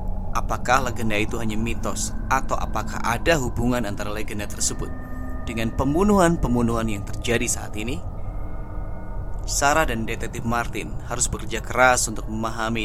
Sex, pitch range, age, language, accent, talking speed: male, 105-125 Hz, 20-39, Indonesian, native, 125 wpm